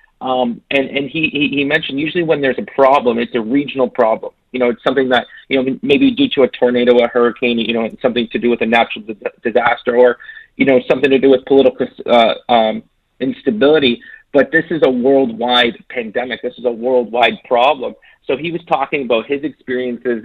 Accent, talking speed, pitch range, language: American, 200 wpm, 120-140 Hz, English